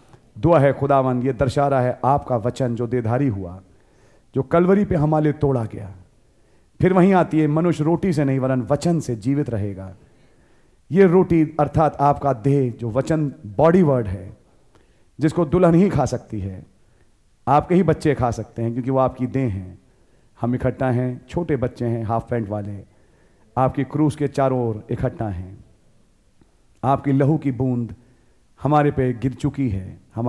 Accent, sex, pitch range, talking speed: Indian, male, 110-150 Hz, 115 wpm